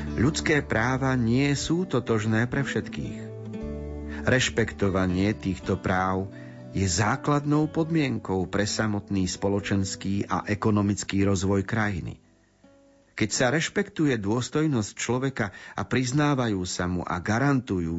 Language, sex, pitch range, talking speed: Slovak, male, 100-130 Hz, 105 wpm